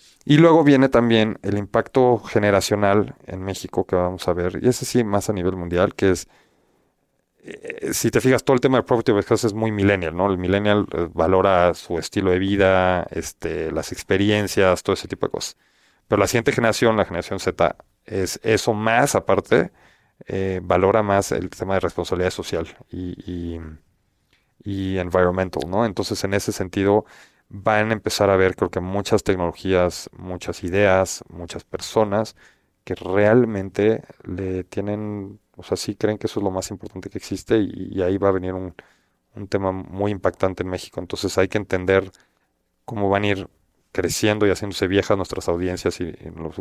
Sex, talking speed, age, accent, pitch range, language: male, 175 wpm, 40-59, Mexican, 90-105 Hz, Spanish